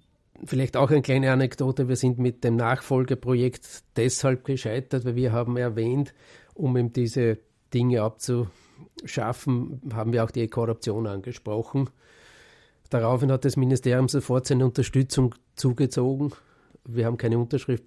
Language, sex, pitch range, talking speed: English, male, 115-130 Hz, 130 wpm